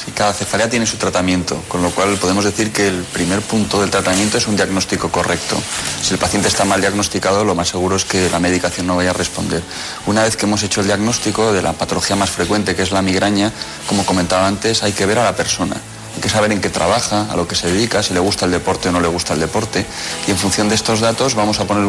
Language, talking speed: Spanish, 255 wpm